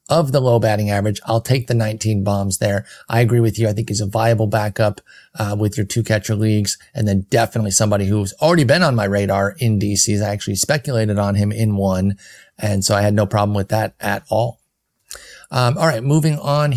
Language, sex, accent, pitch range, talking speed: English, male, American, 105-135 Hz, 220 wpm